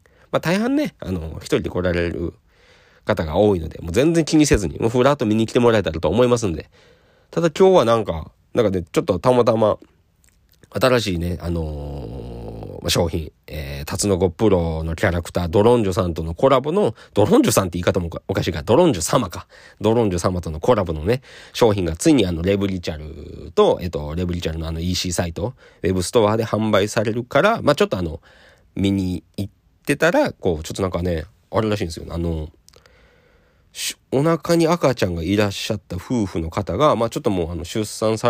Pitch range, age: 85-110 Hz, 40-59